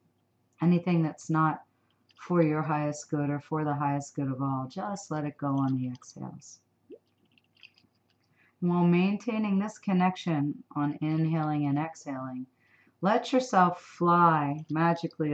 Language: English